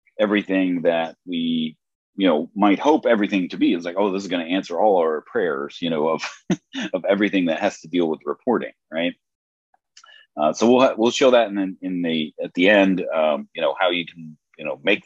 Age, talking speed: 40-59, 215 wpm